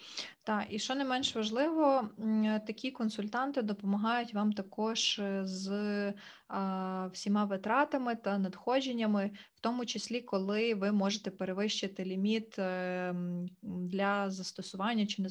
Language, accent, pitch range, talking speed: Ukrainian, native, 195-220 Hz, 110 wpm